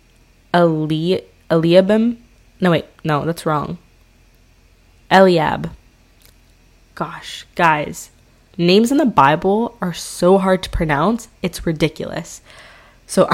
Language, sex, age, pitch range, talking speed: English, female, 20-39, 165-195 Hz, 100 wpm